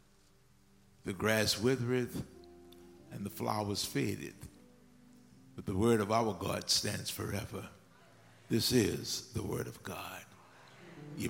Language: English